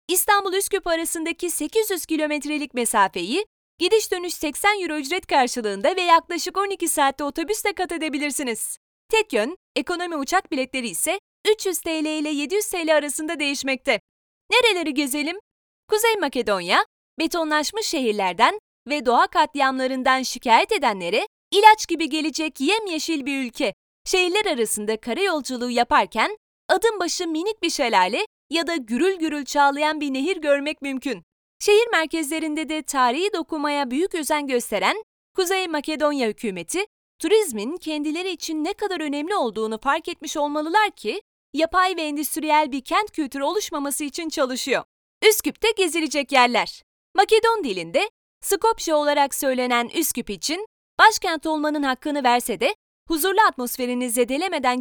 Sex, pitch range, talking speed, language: female, 275-375 Hz, 125 wpm, Turkish